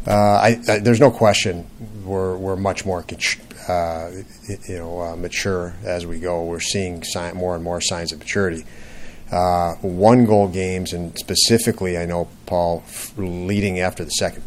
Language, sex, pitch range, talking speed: English, male, 85-100 Hz, 170 wpm